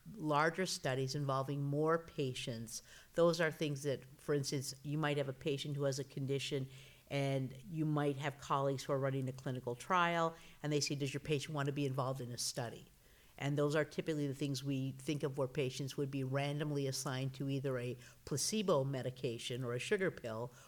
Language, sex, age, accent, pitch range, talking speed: English, female, 50-69, American, 130-150 Hz, 195 wpm